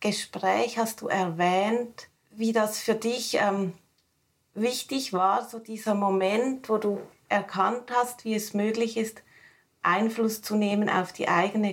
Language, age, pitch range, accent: German, 30-49, 190-230 Hz, Austrian